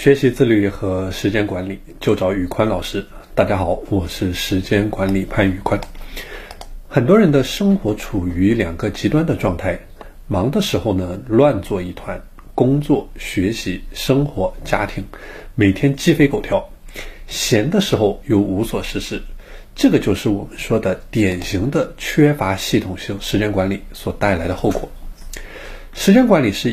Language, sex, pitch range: Chinese, male, 95-145 Hz